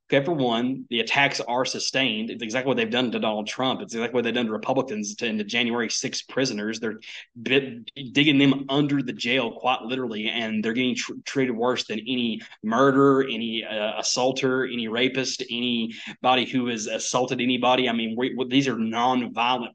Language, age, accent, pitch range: English, 20-39, American, 115-130 Hz